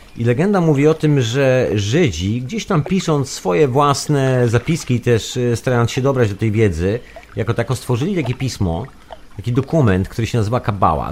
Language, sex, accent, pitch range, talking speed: Polish, male, native, 105-130 Hz, 175 wpm